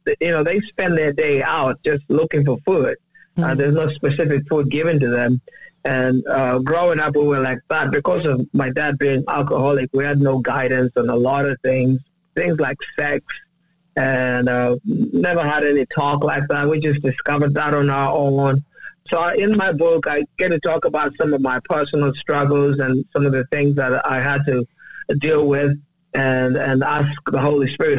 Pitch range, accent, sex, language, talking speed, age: 135-160 Hz, American, male, English, 195 wpm, 50-69